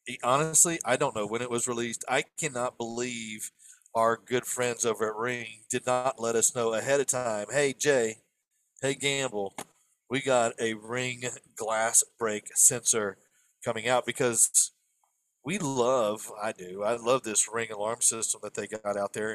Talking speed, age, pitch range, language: 165 wpm, 40-59, 110-130 Hz, English